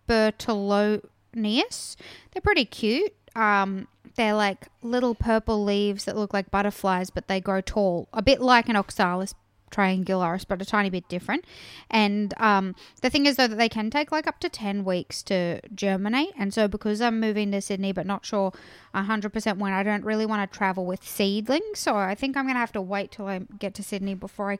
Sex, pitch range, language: female, 185-225 Hz, English